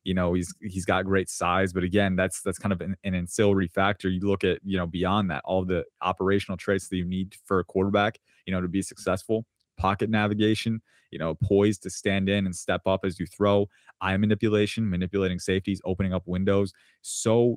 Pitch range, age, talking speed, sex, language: 90-105 Hz, 20-39, 210 wpm, male, English